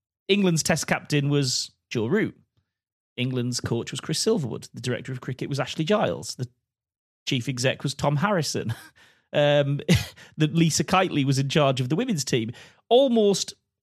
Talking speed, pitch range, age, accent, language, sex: 155 wpm, 130-175 Hz, 30-49, British, English, male